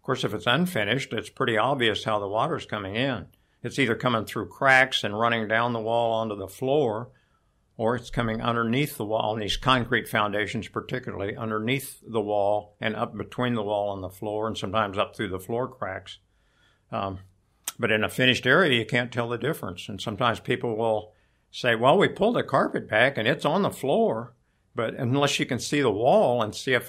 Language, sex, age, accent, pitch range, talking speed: English, male, 60-79, American, 105-125 Hz, 205 wpm